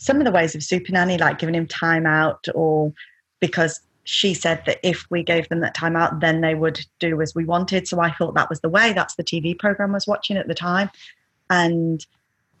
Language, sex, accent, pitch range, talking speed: English, female, British, 165-205 Hz, 230 wpm